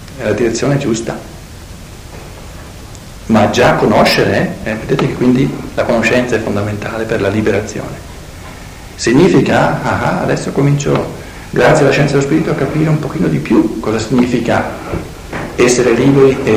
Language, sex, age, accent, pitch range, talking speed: Italian, male, 60-79, native, 100-135 Hz, 140 wpm